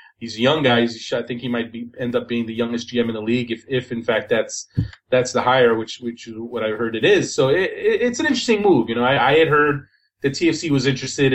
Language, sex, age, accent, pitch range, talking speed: English, male, 30-49, American, 115-140 Hz, 270 wpm